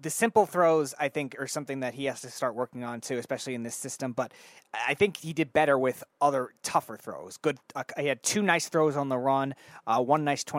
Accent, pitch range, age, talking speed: American, 125-155 Hz, 30-49, 240 wpm